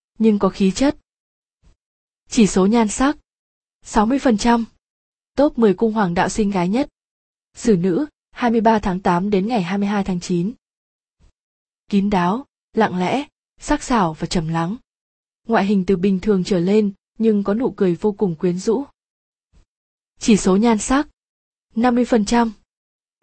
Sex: female